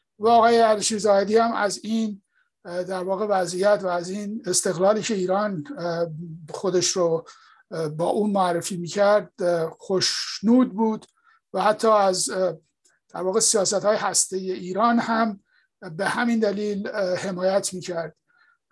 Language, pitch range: English, 185-220 Hz